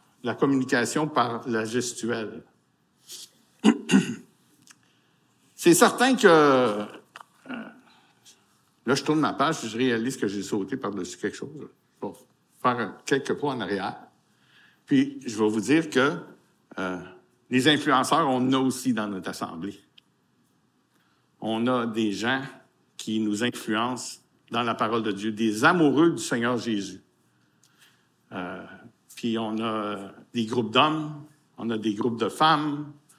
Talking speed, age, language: 130 wpm, 60-79, French